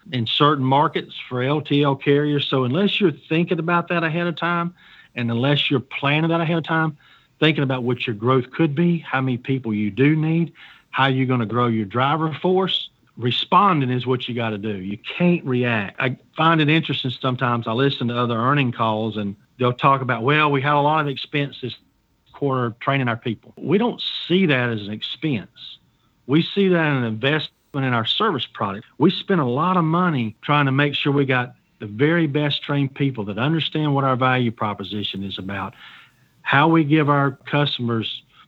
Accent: American